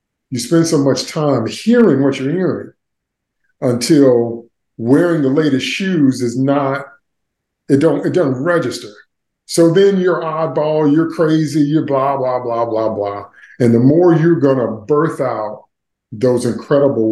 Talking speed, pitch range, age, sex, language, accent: 145 wpm, 125-165 Hz, 50-69, male, English, American